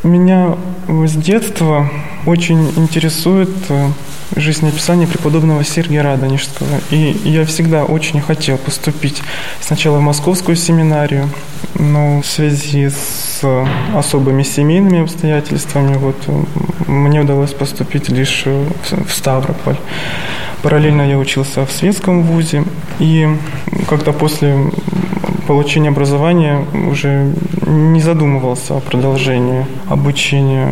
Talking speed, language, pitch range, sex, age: 95 wpm, Russian, 140-160 Hz, male, 20-39